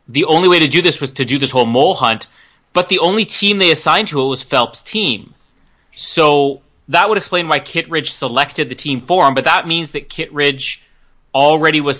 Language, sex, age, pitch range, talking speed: English, male, 30-49, 130-170 Hz, 210 wpm